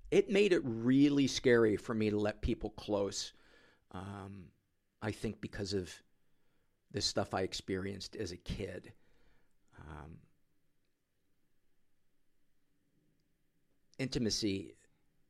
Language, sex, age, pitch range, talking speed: English, male, 50-69, 95-120 Hz, 100 wpm